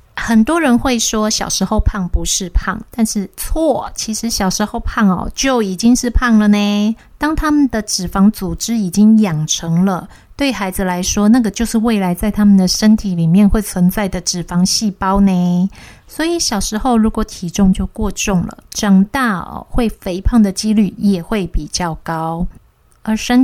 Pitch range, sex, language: 185-225 Hz, female, Chinese